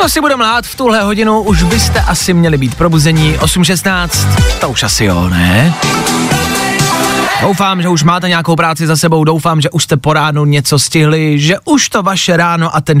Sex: male